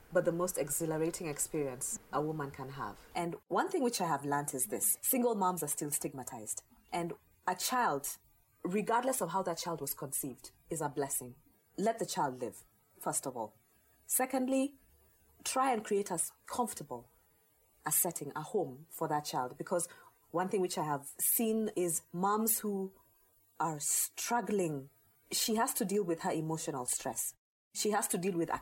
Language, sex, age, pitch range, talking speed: English, female, 30-49, 150-215 Hz, 170 wpm